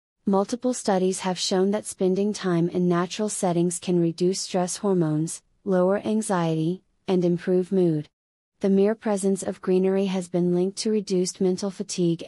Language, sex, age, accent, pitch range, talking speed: English, female, 30-49, American, 175-200 Hz, 150 wpm